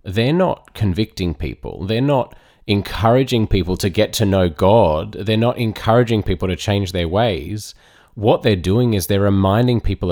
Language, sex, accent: English, male, Australian